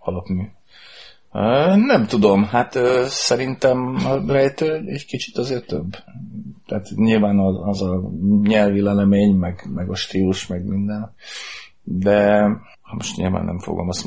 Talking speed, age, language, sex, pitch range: 135 wpm, 40-59, Hungarian, male, 90-105 Hz